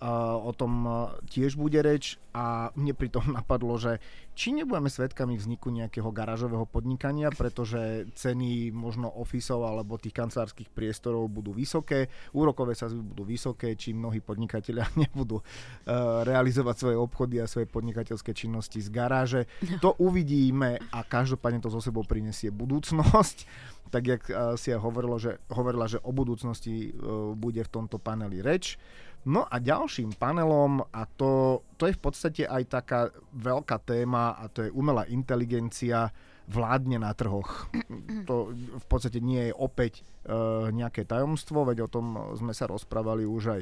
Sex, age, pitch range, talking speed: male, 30-49, 115-130 Hz, 150 wpm